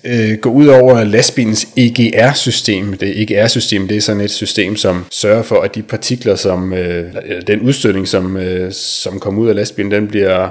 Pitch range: 100-120 Hz